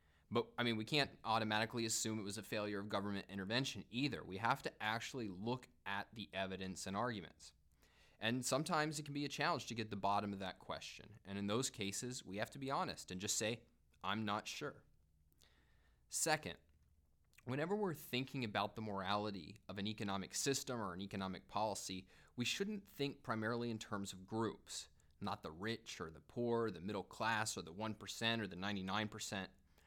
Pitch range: 95-125 Hz